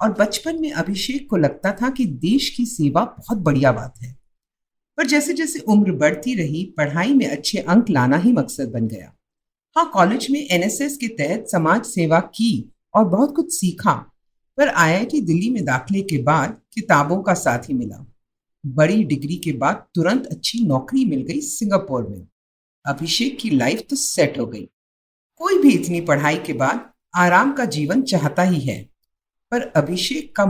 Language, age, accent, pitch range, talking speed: Hindi, 50-69, native, 150-240 Hz, 175 wpm